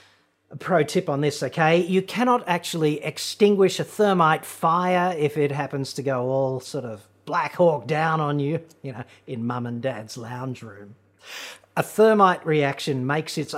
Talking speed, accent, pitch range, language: 170 wpm, Australian, 135-180 Hz, English